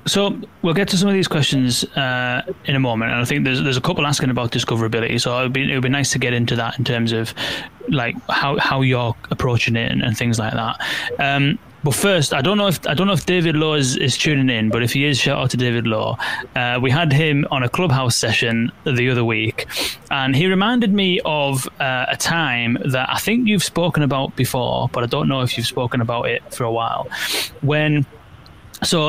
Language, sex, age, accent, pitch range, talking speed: English, male, 20-39, British, 120-150 Hz, 230 wpm